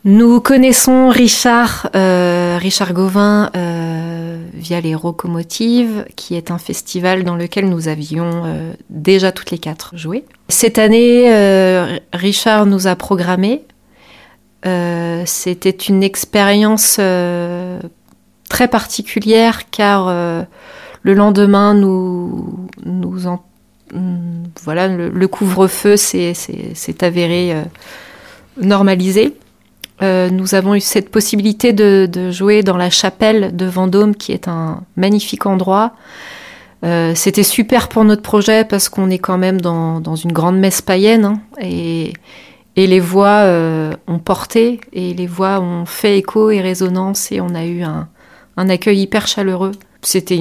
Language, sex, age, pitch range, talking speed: French, female, 30-49, 180-210 Hz, 140 wpm